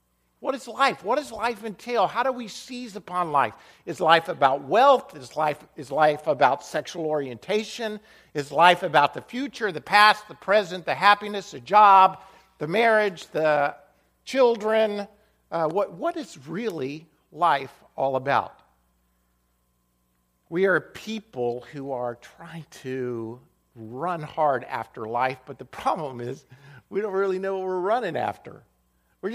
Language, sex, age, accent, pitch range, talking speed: English, male, 50-69, American, 140-205 Hz, 150 wpm